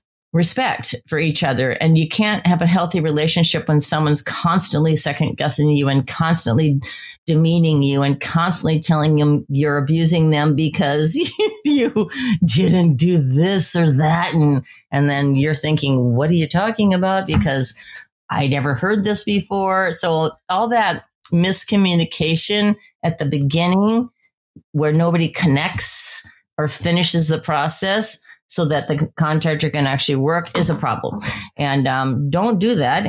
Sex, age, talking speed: female, 40-59, 145 wpm